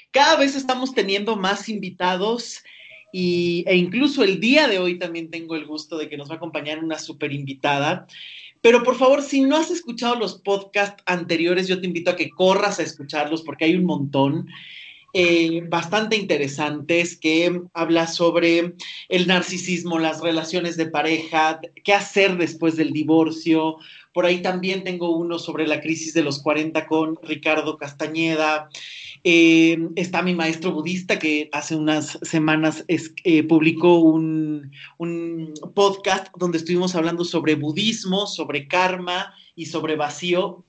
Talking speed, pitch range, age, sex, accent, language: 150 wpm, 160-195 Hz, 30-49, male, Mexican, Spanish